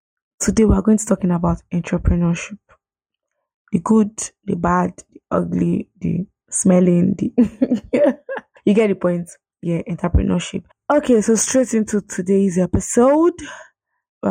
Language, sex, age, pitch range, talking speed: English, female, 20-39, 175-220 Hz, 130 wpm